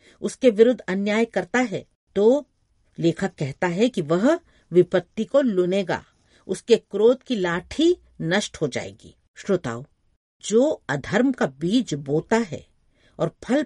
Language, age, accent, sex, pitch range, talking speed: Hindi, 50-69, native, female, 155-225 Hz, 130 wpm